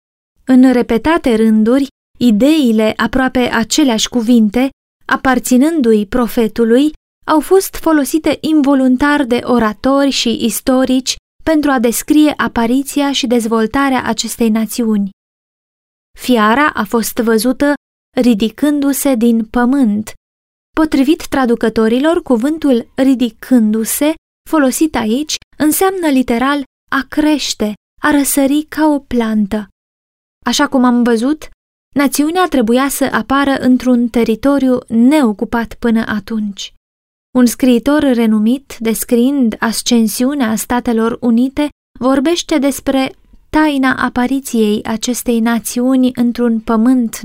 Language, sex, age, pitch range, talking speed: Romanian, female, 20-39, 230-275 Hz, 95 wpm